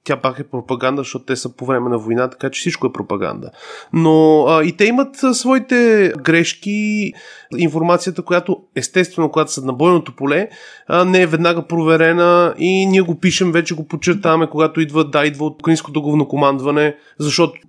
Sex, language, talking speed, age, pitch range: male, Bulgarian, 175 wpm, 20-39, 150-180 Hz